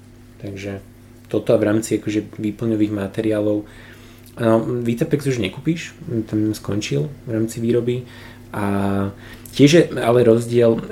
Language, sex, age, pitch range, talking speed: Slovak, male, 20-39, 100-120 Hz, 115 wpm